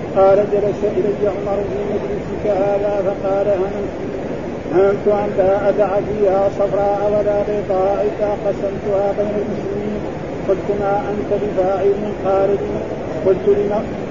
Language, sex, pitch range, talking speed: Arabic, male, 195-205 Hz, 110 wpm